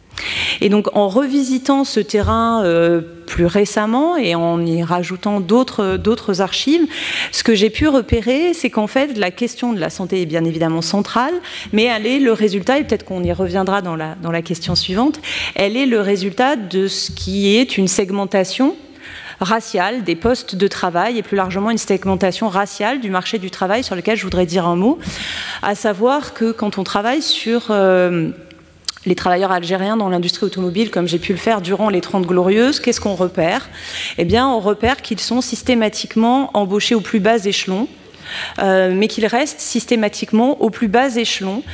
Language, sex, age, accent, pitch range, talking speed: French, female, 30-49, French, 190-240 Hz, 180 wpm